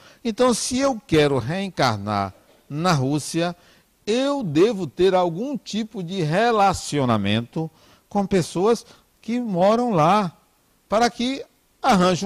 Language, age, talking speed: Portuguese, 60-79, 110 wpm